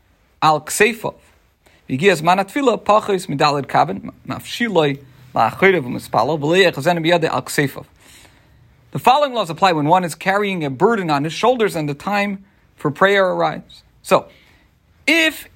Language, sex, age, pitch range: English, male, 40-59, 145-195 Hz